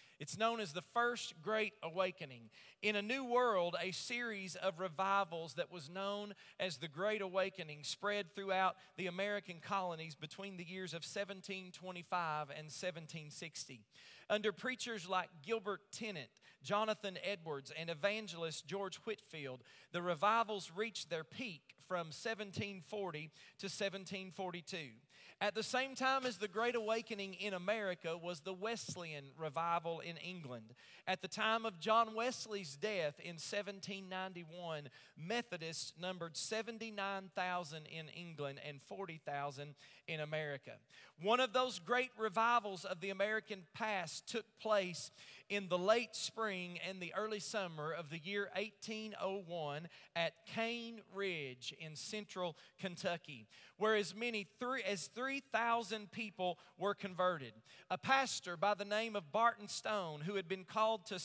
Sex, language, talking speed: male, English, 135 wpm